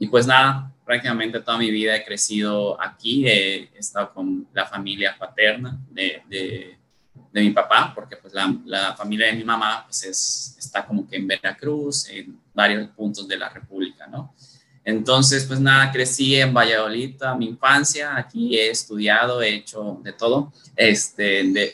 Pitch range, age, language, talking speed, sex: 105-130 Hz, 20-39, Spanish, 170 wpm, male